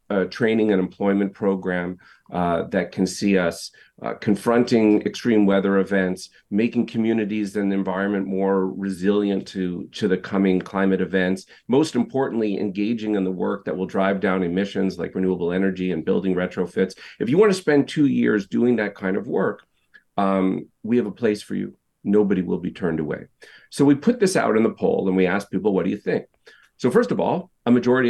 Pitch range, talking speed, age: 95-145 Hz, 195 wpm, 40-59